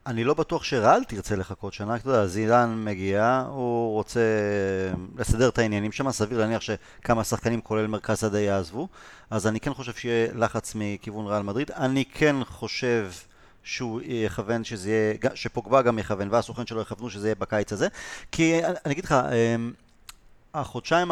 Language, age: Hebrew, 30-49